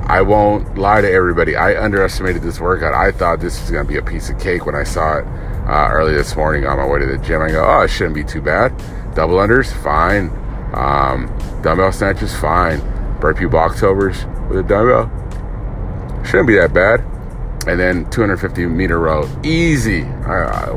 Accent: American